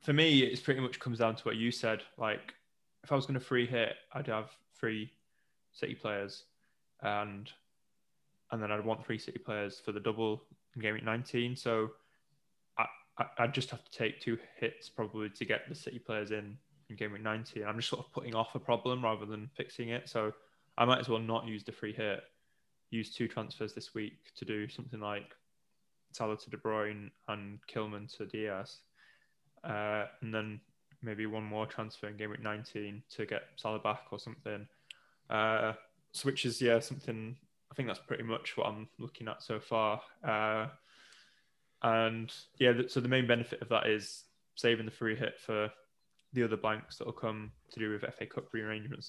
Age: 10-29